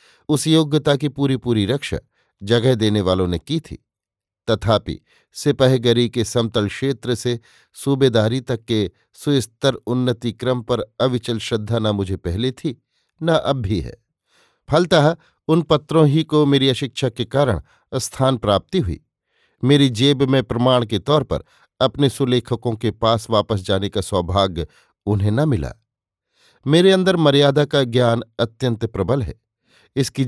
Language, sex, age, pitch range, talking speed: Hindi, male, 50-69, 110-135 Hz, 145 wpm